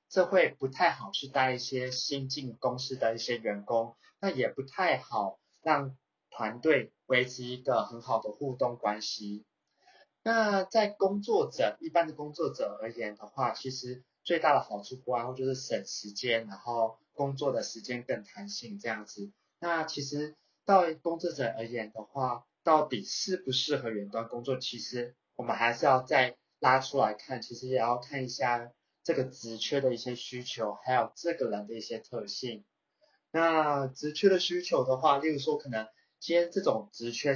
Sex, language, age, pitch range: male, Chinese, 30-49, 115-150 Hz